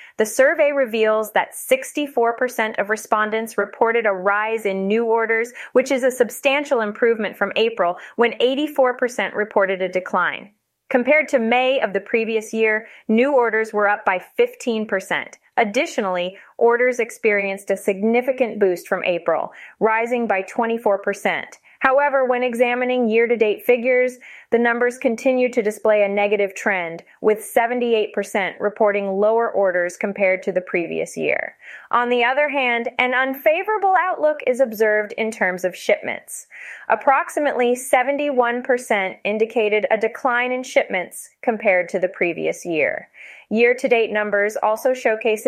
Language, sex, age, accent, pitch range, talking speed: English, female, 30-49, American, 205-250 Hz, 140 wpm